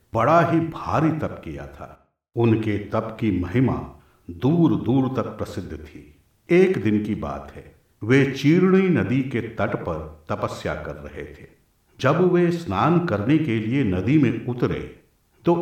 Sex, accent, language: male, native, Hindi